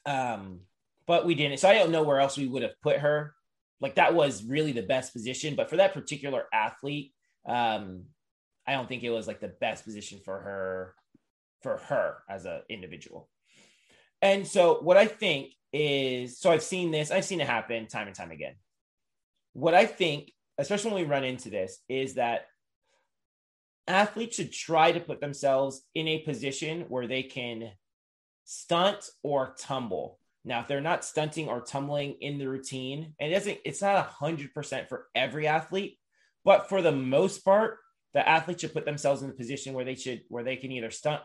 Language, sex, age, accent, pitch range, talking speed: English, male, 20-39, American, 125-160 Hz, 190 wpm